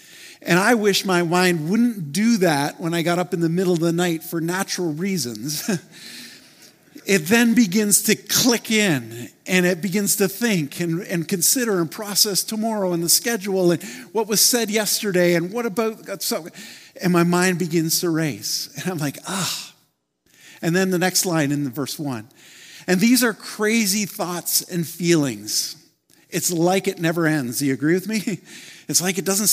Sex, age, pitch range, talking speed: male, 50-69, 160-200 Hz, 180 wpm